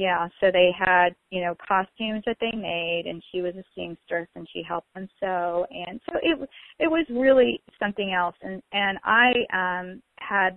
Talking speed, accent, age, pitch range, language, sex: 185 wpm, American, 30-49, 175-220 Hz, English, female